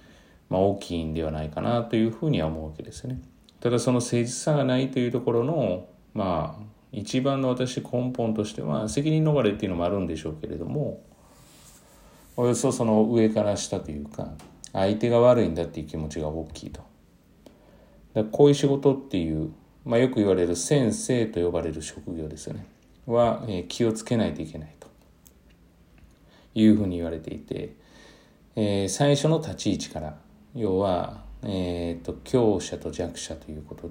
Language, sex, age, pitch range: Japanese, male, 40-59, 85-120 Hz